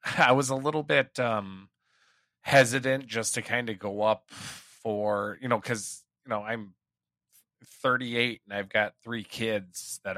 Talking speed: 160 wpm